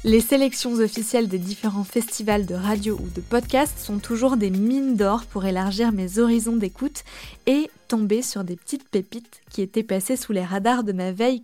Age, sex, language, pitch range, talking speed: 20-39, female, French, 205-250 Hz, 190 wpm